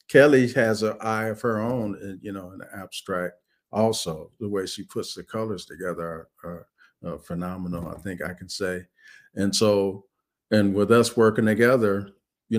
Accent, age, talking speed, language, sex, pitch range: American, 50-69, 175 wpm, English, male, 95-115 Hz